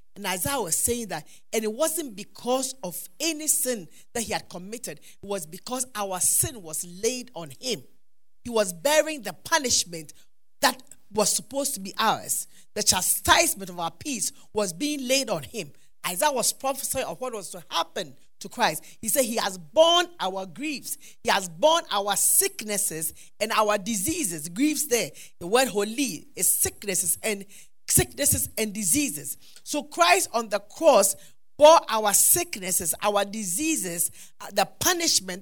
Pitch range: 195-290 Hz